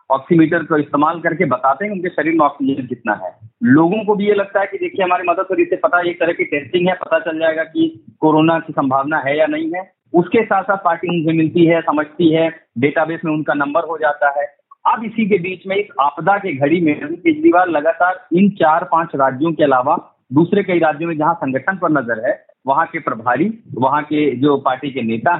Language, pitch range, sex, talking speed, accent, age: Hindi, 155-200 Hz, male, 220 wpm, native, 40-59